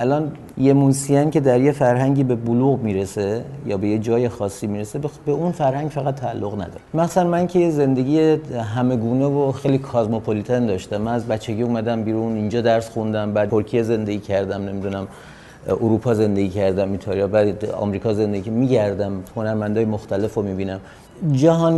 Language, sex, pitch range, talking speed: Persian, male, 100-125 Hz, 155 wpm